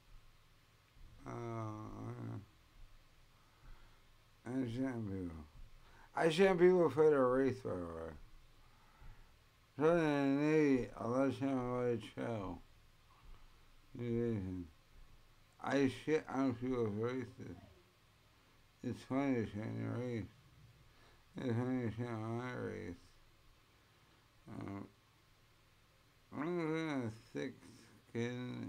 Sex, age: male, 60-79